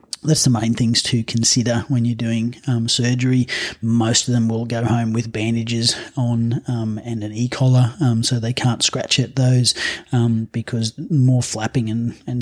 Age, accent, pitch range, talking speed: 30-49, Australian, 110-125 Hz, 185 wpm